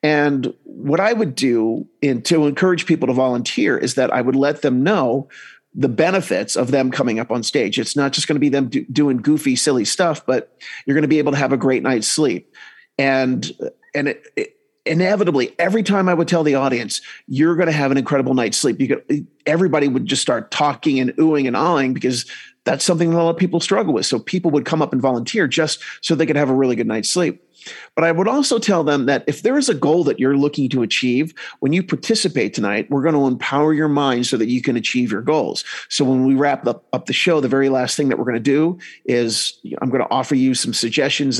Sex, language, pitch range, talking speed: male, English, 130-170 Hz, 240 wpm